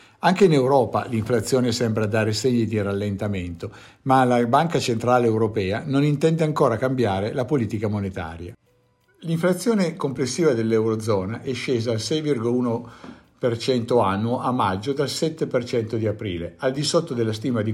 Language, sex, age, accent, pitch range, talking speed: Italian, male, 50-69, native, 110-140 Hz, 145 wpm